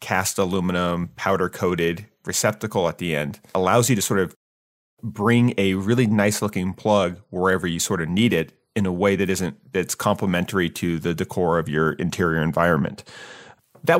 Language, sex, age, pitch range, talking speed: English, male, 30-49, 95-120 Hz, 170 wpm